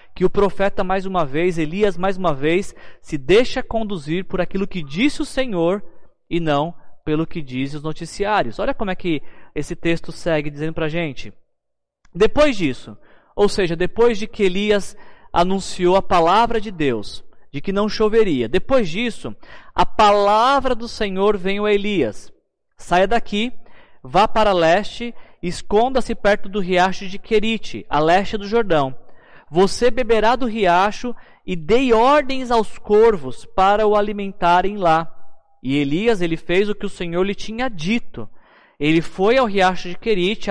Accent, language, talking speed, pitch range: Brazilian, Portuguese, 160 wpm, 165-215 Hz